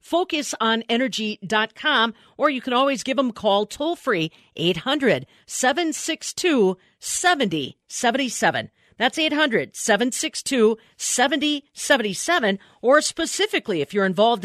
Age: 40-59